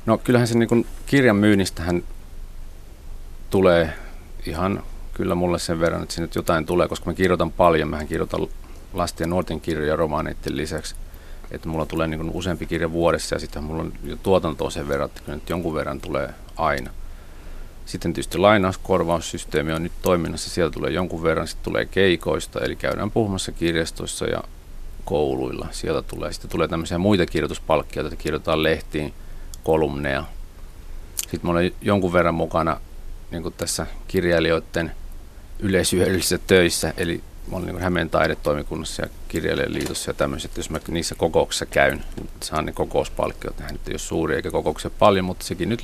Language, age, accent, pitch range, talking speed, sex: Finnish, 40-59, native, 75-90 Hz, 160 wpm, male